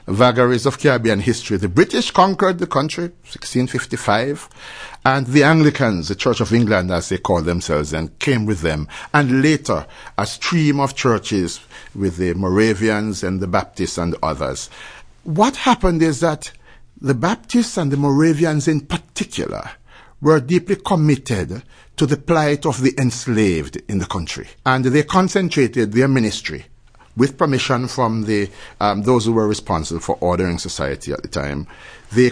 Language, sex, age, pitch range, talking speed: English, male, 60-79, 100-145 Hz, 160 wpm